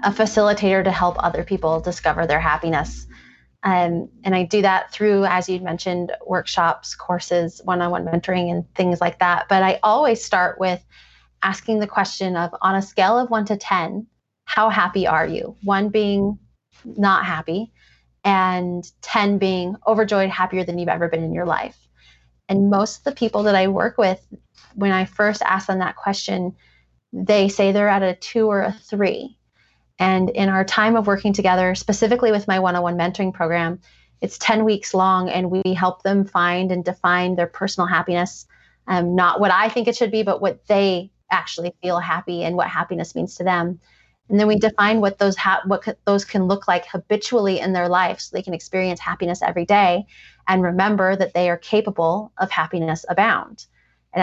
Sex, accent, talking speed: female, American, 185 wpm